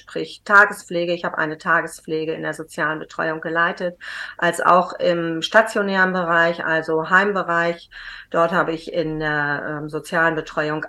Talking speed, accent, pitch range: 145 wpm, German, 165-185 Hz